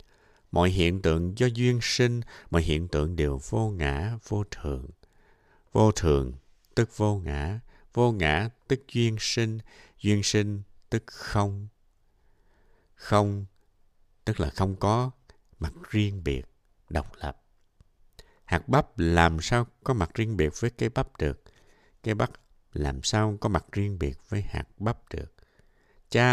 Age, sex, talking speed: 60-79, male, 145 wpm